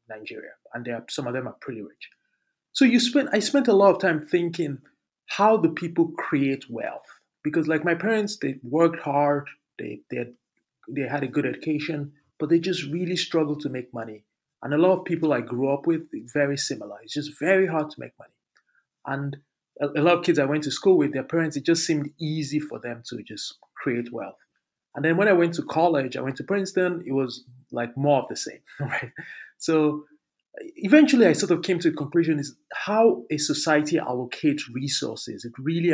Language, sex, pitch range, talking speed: English, male, 135-170 Hz, 205 wpm